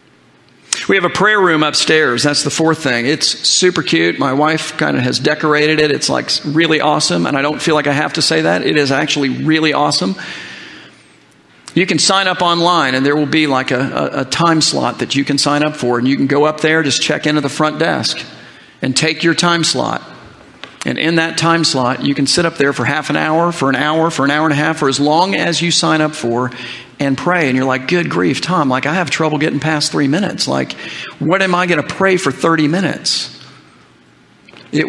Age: 40-59